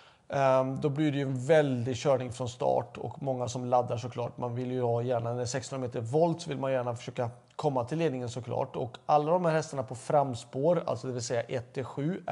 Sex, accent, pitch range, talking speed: male, native, 130-165 Hz, 205 wpm